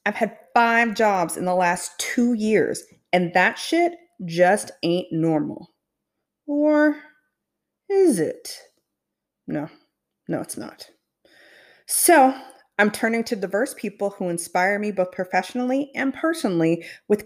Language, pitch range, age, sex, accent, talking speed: English, 180-245 Hz, 30-49, female, American, 125 wpm